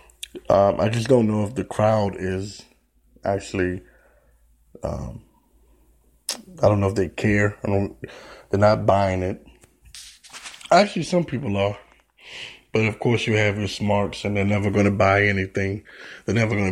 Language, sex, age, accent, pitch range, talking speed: English, male, 20-39, American, 100-115 Hz, 160 wpm